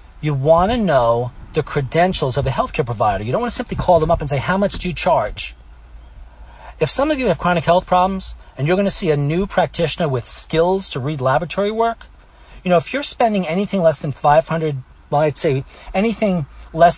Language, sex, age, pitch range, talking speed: English, male, 40-59, 120-175 Hz, 215 wpm